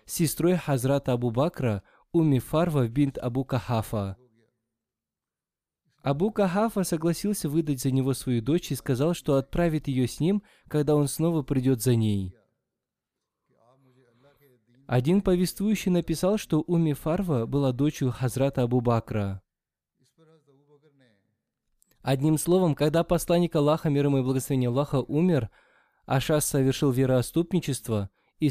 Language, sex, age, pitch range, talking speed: Russian, male, 20-39, 125-160 Hz, 105 wpm